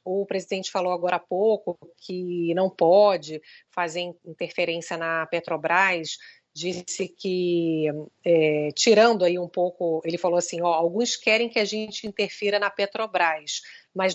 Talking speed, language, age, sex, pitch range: 140 wpm, Portuguese, 30-49, female, 180-220 Hz